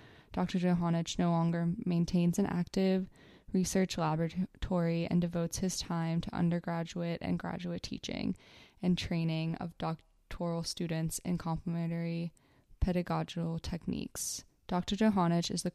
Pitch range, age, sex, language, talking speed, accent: 165-185 Hz, 20-39, female, English, 120 wpm, American